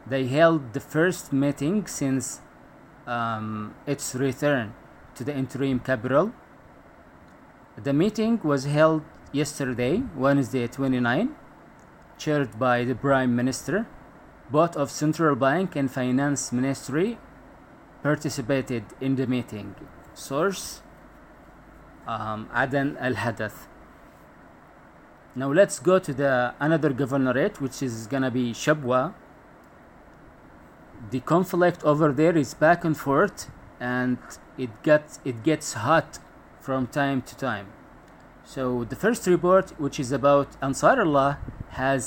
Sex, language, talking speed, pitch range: male, English, 115 wpm, 130-150 Hz